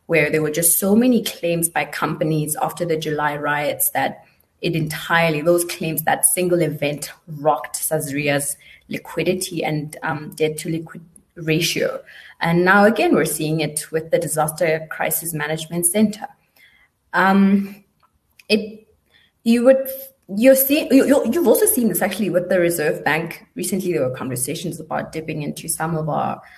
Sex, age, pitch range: female, 20-39, 155-190 Hz